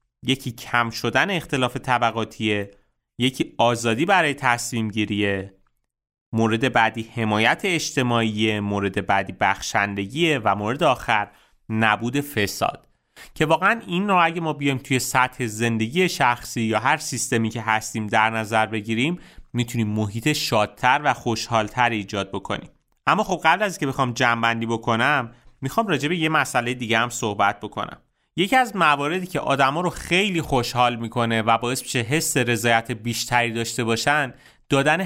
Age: 30-49